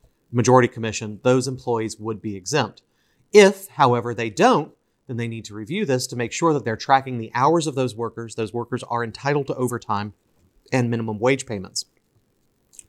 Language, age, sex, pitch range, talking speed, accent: English, 30-49, male, 115-160 Hz, 180 wpm, American